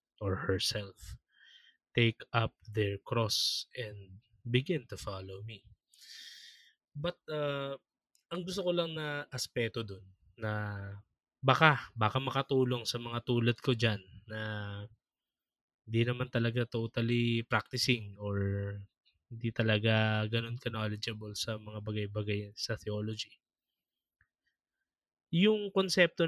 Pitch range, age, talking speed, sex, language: 110-145 Hz, 20-39, 105 wpm, male, Filipino